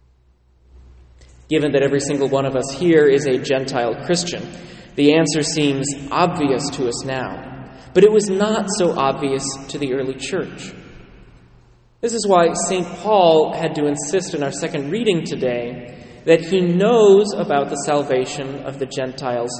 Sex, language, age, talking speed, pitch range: male, English, 30-49, 155 wpm, 135-175 Hz